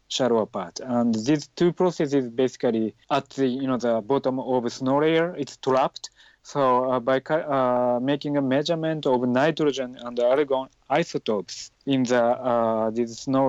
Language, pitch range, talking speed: English, 120-140 Hz, 165 wpm